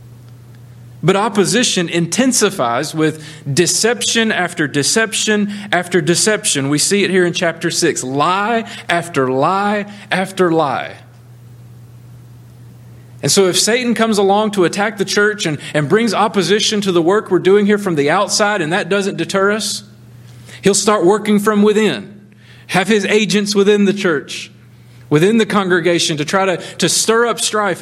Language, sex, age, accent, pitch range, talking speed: English, male, 40-59, American, 145-210 Hz, 150 wpm